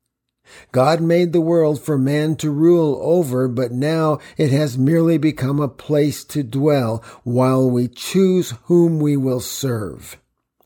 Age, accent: 50-69, American